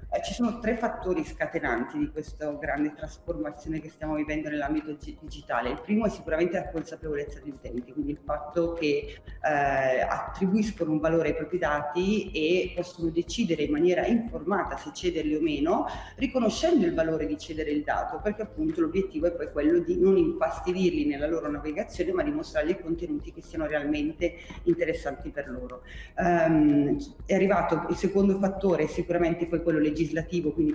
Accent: native